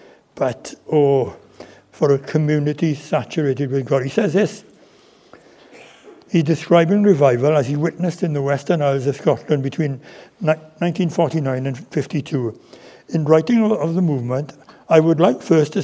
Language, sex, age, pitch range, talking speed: English, male, 60-79, 140-175 Hz, 140 wpm